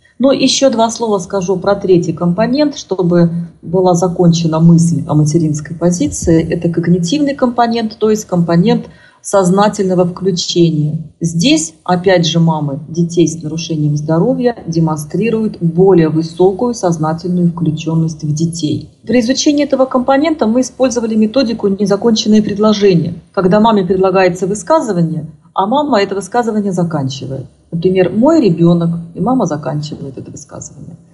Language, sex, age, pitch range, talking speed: Russian, female, 40-59, 165-215 Hz, 125 wpm